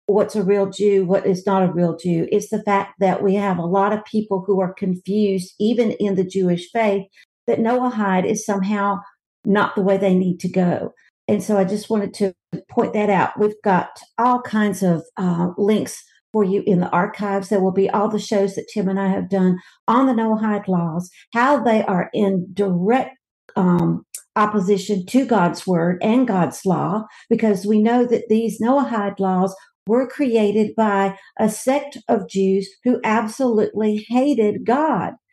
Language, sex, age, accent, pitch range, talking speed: English, female, 50-69, American, 195-230 Hz, 180 wpm